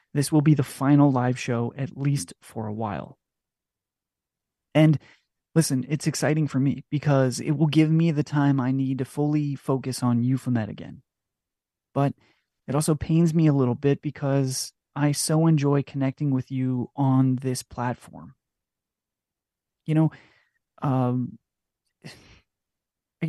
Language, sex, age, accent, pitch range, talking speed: English, male, 30-49, American, 130-150 Hz, 140 wpm